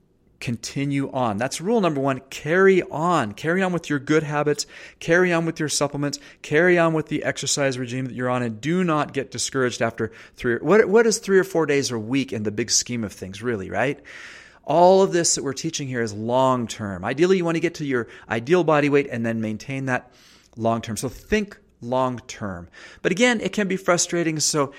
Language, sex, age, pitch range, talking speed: English, male, 40-59, 120-160 Hz, 220 wpm